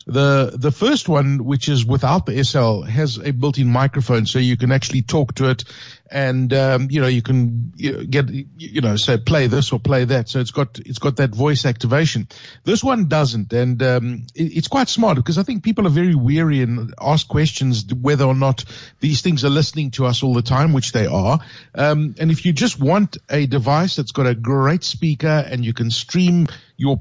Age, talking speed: 50-69, 210 wpm